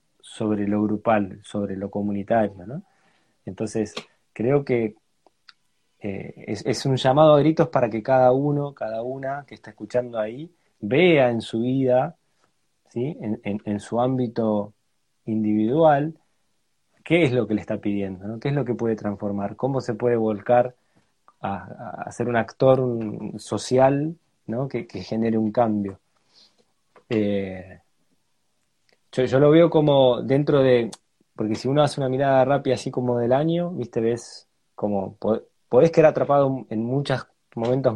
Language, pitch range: Spanish, 110-145 Hz